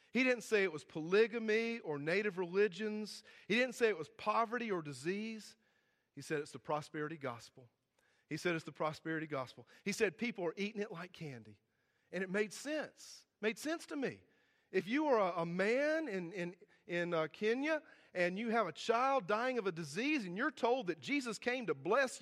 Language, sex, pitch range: English, male, 155-230 Hz